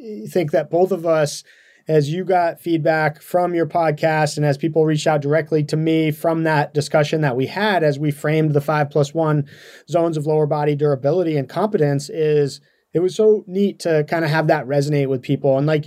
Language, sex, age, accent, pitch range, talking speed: English, male, 30-49, American, 150-175 Hz, 210 wpm